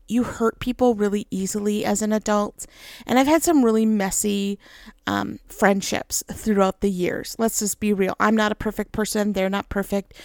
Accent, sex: American, female